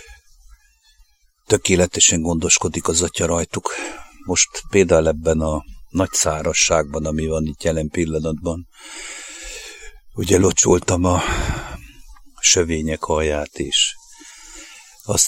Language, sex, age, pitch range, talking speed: English, male, 60-79, 80-100 Hz, 80 wpm